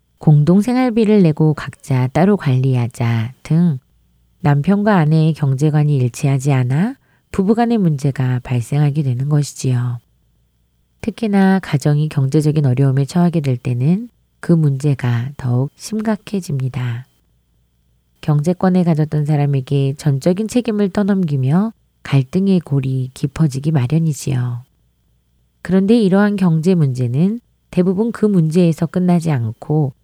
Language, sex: Korean, female